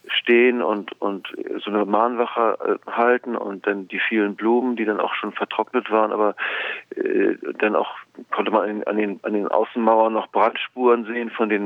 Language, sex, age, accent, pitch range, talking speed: German, male, 40-59, German, 105-120 Hz, 190 wpm